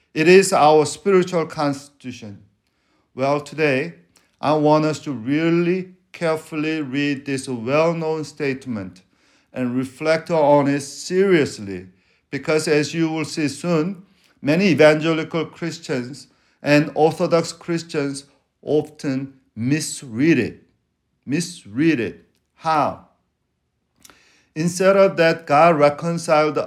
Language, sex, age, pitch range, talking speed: English, male, 50-69, 135-165 Hz, 100 wpm